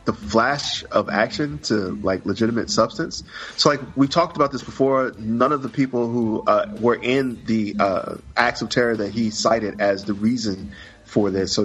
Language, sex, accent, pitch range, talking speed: English, male, American, 100-125 Hz, 190 wpm